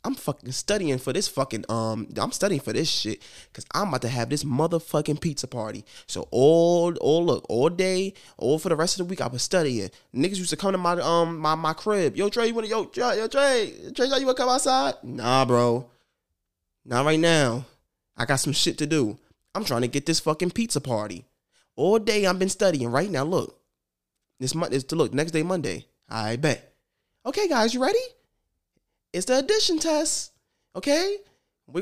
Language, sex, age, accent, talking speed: English, male, 20-39, American, 200 wpm